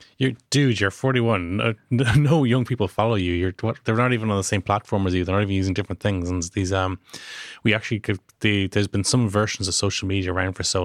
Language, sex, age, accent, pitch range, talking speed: English, male, 20-39, Irish, 95-110 Hz, 240 wpm